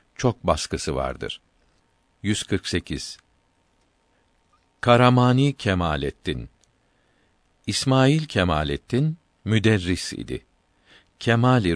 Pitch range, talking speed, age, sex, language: 90-115 Hz, 55 wpm, 50-69, male, Turkish